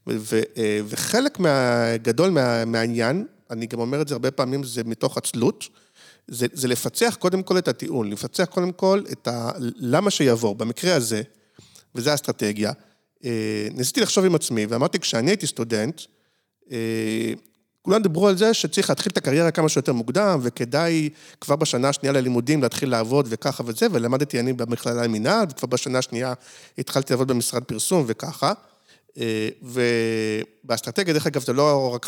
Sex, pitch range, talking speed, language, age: male, 120-165 Hz, 150 wpm, Hebrew, 50-69